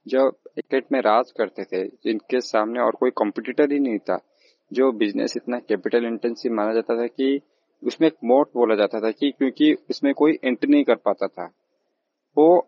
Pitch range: 115-155 Hz